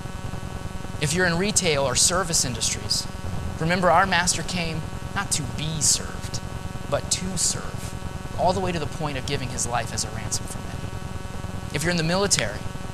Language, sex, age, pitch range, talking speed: English, male, 30-49, 95-160 Hz, 175 wpm